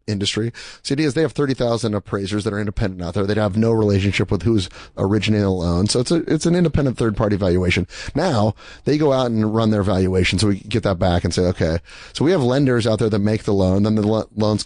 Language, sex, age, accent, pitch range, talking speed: English, male, 30-49, American, 95-115 Hz, 250 wpm